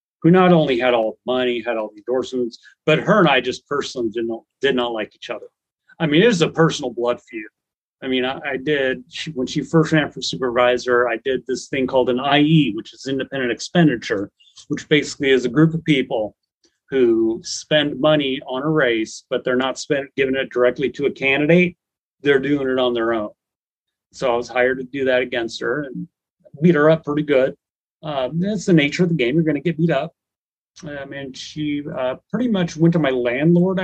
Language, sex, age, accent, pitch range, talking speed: English, male, 30-49, American, 125-165 Hz, 210 wpm